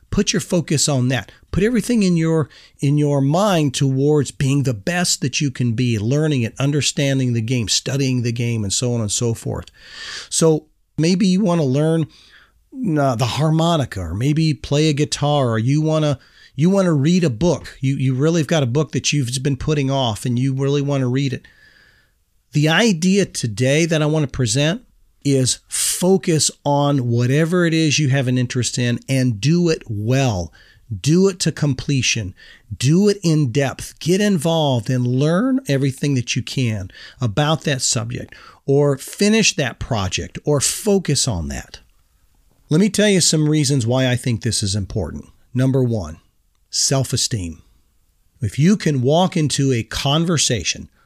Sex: male